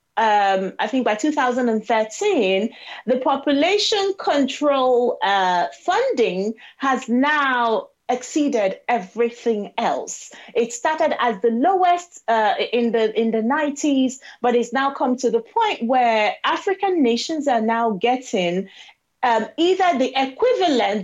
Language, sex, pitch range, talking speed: English, female, 230-295 Hz, 125 wpm